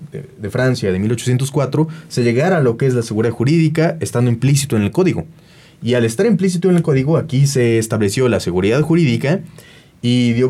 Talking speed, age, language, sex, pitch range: 195 wpm, 30-49, Spanish, male, 115-155 Hz